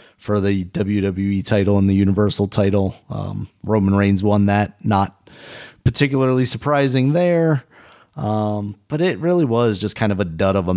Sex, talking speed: male, 160 wpm